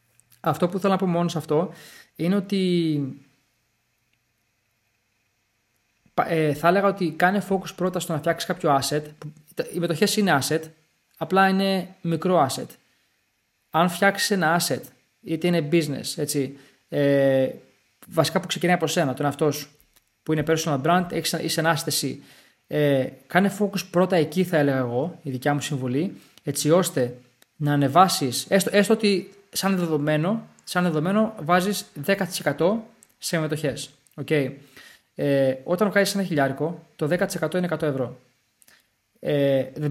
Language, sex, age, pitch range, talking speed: Greek, male, 20-39, 140-185 Hz, 140 wpm